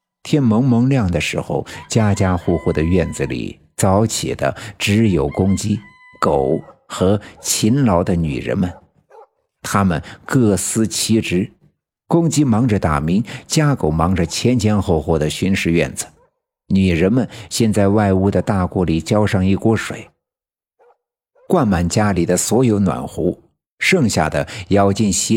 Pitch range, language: 90-110 Hz, Chinese